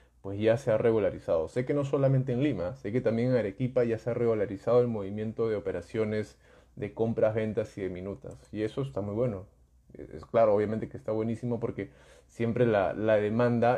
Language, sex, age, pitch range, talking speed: Spanish, male, 20-39, 100-120 Hz, 200 wpm